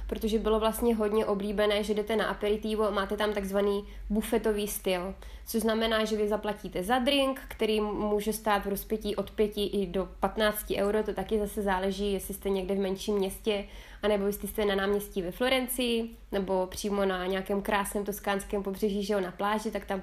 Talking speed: 190 wpm